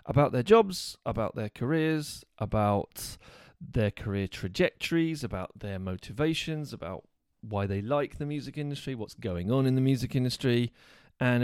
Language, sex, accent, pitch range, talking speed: English, male, British, 100-125 Hz, 145 wpm